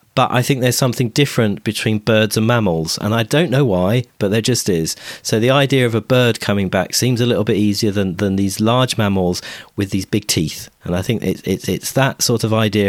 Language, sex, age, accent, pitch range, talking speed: English, male, 40-59, British, 95-125 Hz, 230 wpm